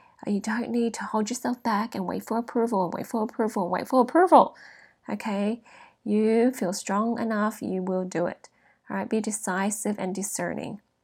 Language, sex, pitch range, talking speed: English, female, 195-235 Hz, 175 wpm